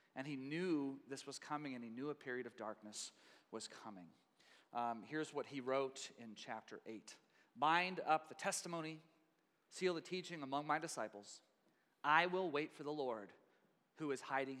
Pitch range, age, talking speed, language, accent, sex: 140-200 Hz, 30-49, 175 wpm, English, American, male